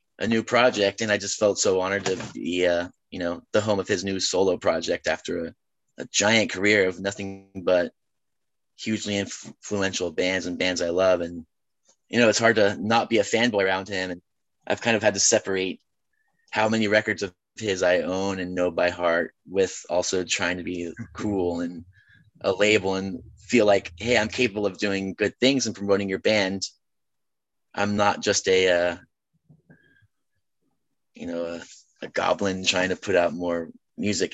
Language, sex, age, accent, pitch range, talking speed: English, male, 30-49, American, 95-120 Hz, 185 wpm